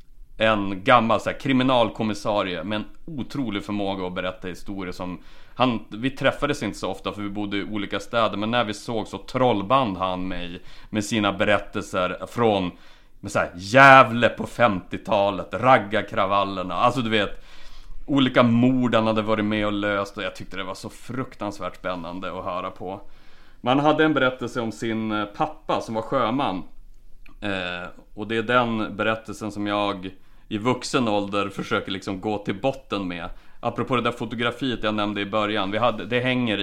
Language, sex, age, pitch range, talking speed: English, male, 30-49, 100-120 Hz, 170 wpm